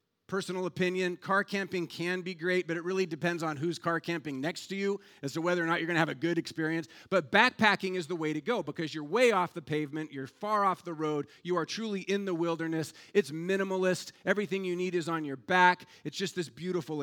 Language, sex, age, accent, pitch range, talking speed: English, male, 40-59, American, 155-190 Hz, 235 wpm